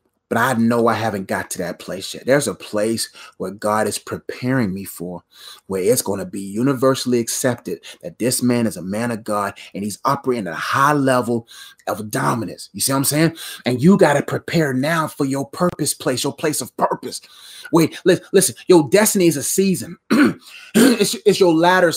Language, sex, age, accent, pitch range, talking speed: English, male, 30-49, American, 165-235 Hz, 200 wpm